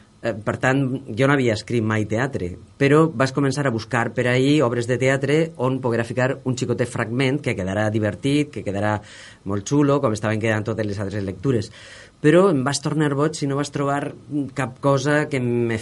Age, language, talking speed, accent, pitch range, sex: 30-49, Spanish, 205 wpm, Spanish, 110-135 Hz, female